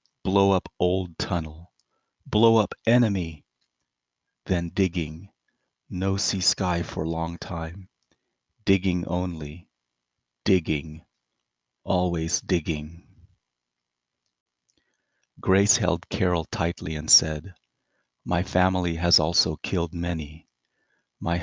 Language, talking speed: English, 90 wpm